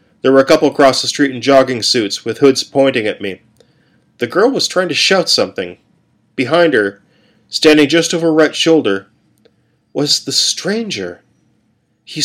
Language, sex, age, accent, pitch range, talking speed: English, male, 40-59, American, 125-175 Hz, 165 wpm